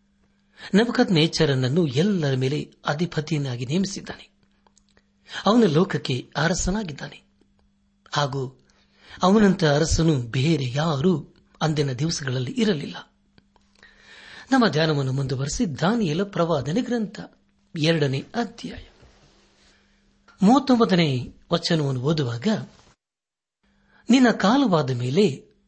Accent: native